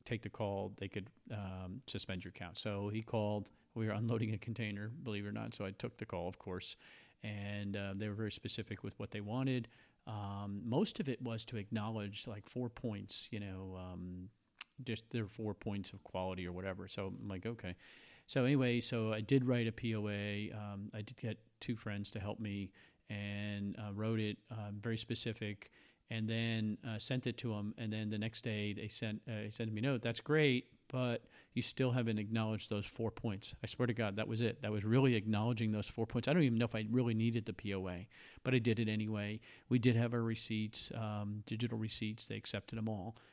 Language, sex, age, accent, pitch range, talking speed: English, male, 40-59, American, 105-120 Hz, 220 wpm